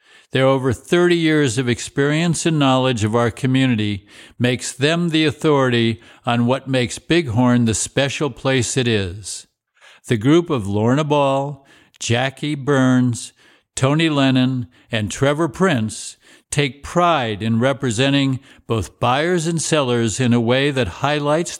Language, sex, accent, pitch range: English, male, American, 120-145 Hz